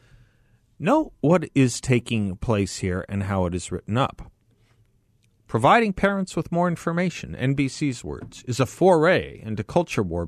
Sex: male